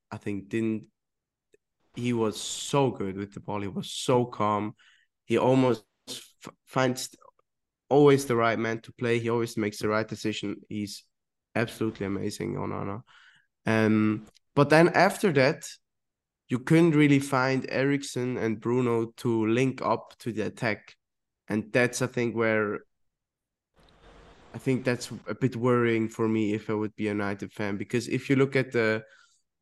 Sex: male